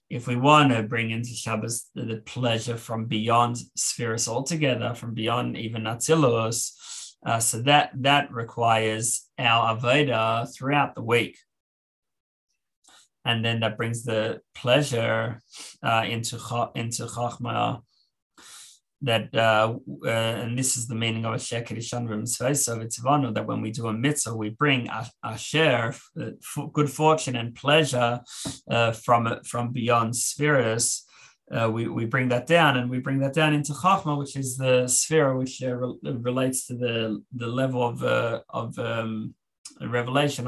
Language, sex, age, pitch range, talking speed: English, male, 20-39, 115-145 Hz, 155 wpm